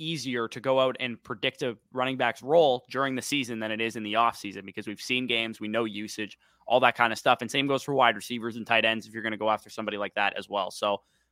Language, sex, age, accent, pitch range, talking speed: English, male, 20-39, American, 110-130 Hz, 275 wpm